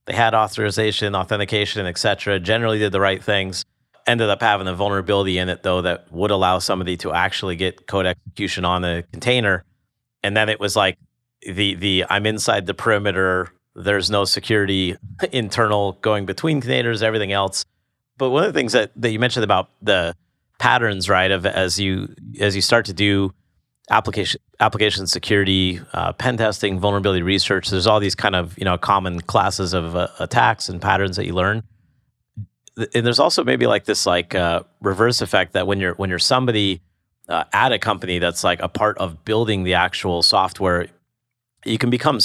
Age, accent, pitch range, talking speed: 40-59, American, 95-110 Hz, 185 wpm